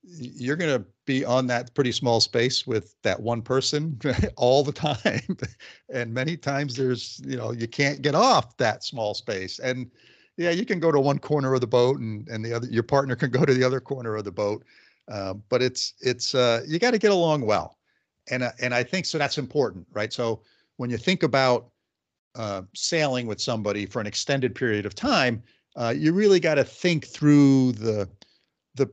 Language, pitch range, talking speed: English, 115-150 Hz, 205 wpm